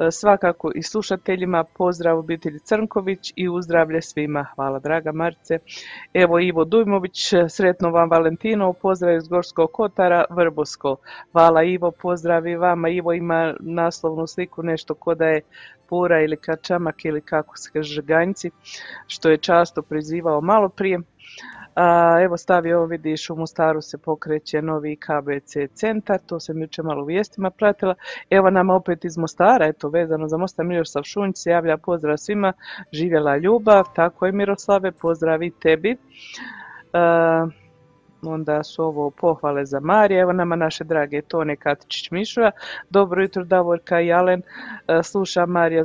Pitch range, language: 160-180 Hz, Croatian